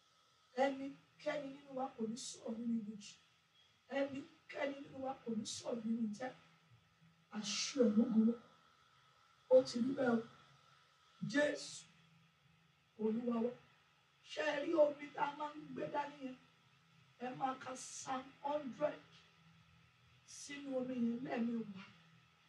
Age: 40-59